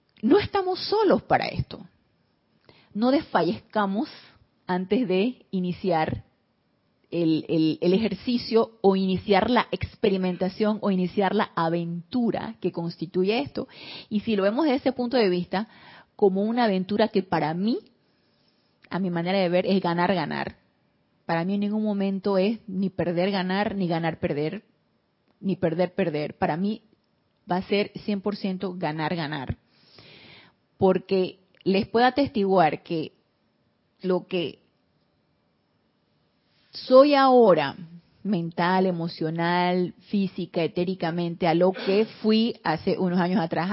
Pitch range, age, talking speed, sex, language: 175-215 Hz, 30-49, 120 wpm, female, Spanish